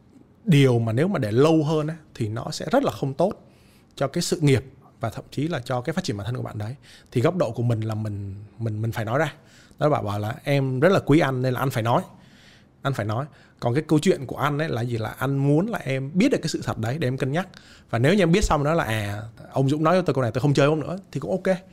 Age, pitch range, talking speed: 20-39, 115-155 Hz, 295 wpm